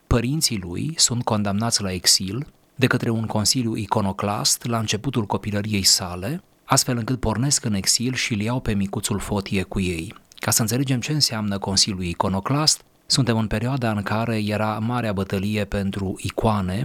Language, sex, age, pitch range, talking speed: Romanian, male, 30-49, 100-120 Hz, 160 wpm